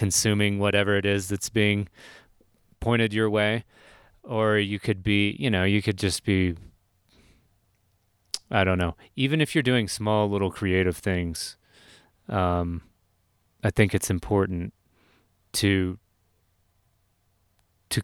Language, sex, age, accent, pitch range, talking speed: English, male, 30-49, American, 90-110 Hz, 125 wpm